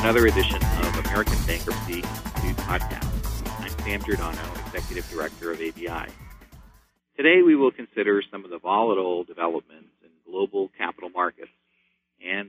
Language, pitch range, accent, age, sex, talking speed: English, 80-105 Hz, American, 50-69, male, 135 wpm